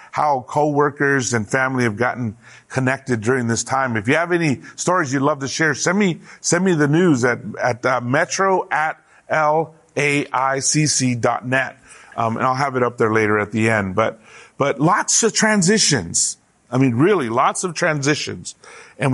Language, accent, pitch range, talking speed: English, American, 125-170 Hz, 175 wpm